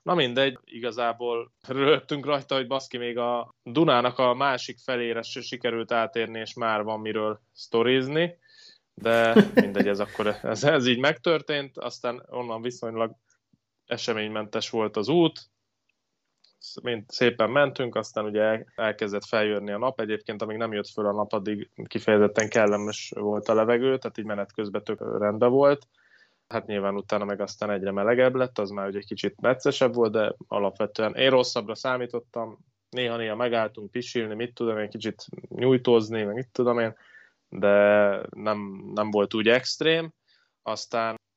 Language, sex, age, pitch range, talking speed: Hungarian, male, 20-39, 105-125 Hz, 145 wpm